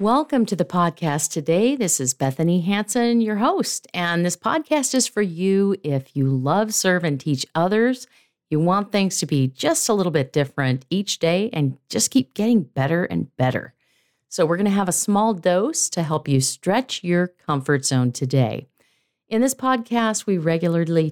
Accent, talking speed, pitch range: American, 180 wpm, 140-210 Hz